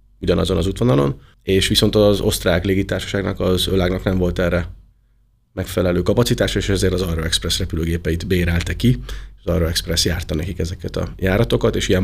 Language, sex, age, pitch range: Hungarian, male, 30-49, 90-110 Hz